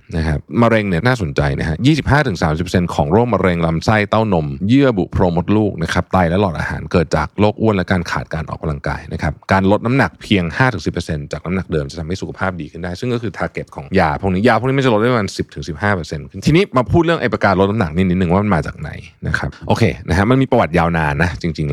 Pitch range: 80-115 Hz